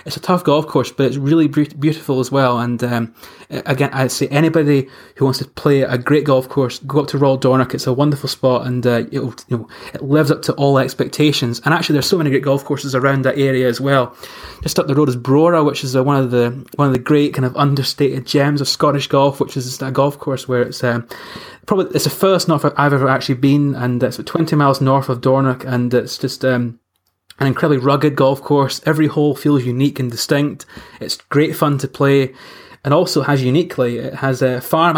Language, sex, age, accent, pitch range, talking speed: English, male, 20-39, British, 130-145 Hz, 230 wpm